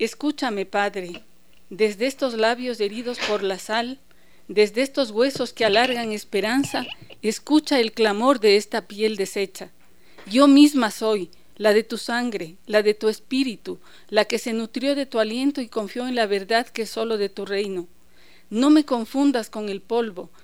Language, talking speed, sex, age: Spanish, 165 wpm, female, 50-69